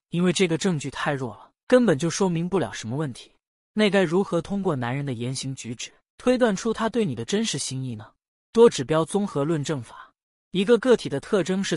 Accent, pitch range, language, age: native, 130-190 Hz, Chinese, 20-39